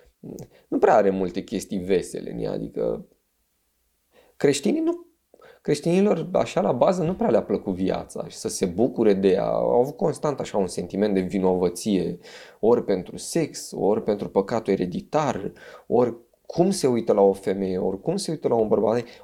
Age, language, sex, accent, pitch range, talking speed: 20-39, Romanian, male, native, 100-165 Hz, 170 wpm